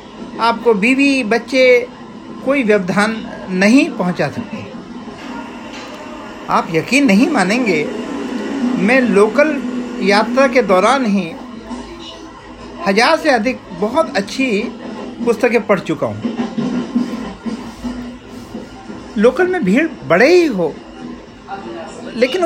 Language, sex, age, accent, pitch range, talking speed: Hindi, male, 50-69, native, 210-265 Hz, 90 wpm